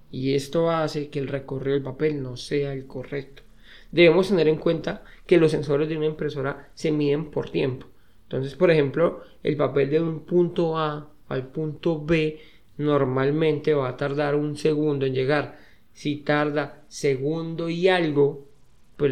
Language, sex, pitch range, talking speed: Spanish, male, 140-165 Hz, 165 wpm